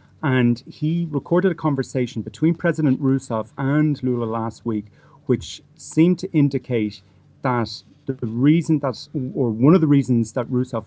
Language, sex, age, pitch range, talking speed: English, male, 30-49, 110-135 Hz, 150 wpm